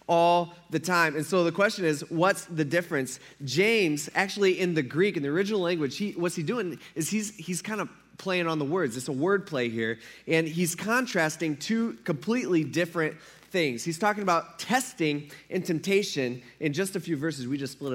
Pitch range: 145-180 Hz